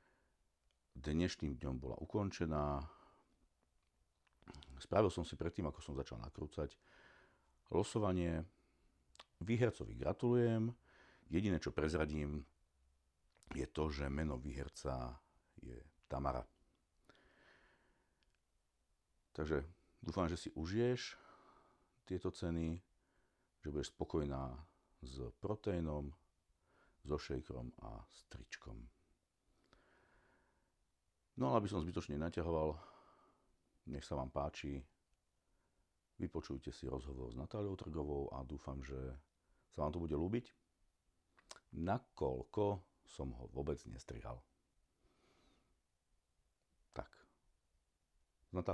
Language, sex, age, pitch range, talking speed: Slovak, male, 50-69, 70-85 Hz, 90 wpm